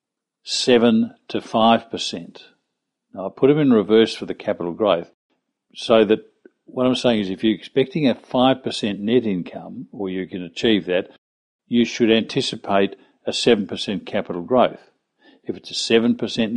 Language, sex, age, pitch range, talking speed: English, male, 50-69, 100-120 Hz, 150 wpm